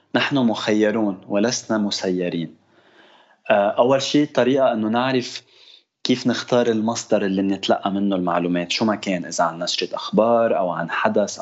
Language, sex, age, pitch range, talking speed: Arabic, male, 20-39, 100-120 Hz, 135 wpm